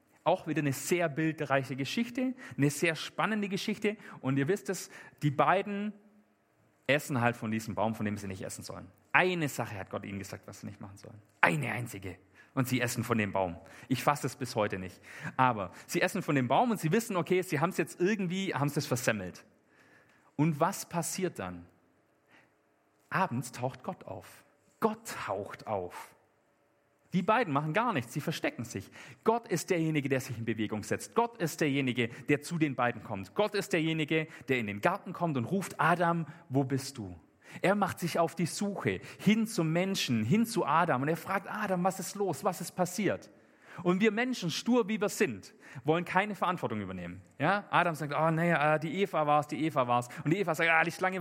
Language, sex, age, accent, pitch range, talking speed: German, male, 40-59, German, 130-185 Hz, 200 wpm